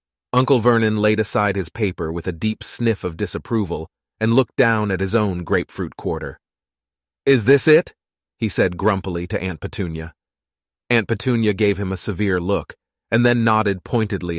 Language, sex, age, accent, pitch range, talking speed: English, male, 30-49, American, 90-115 Hz, 165 wpm